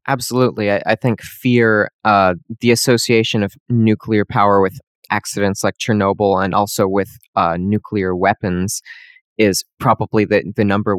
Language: English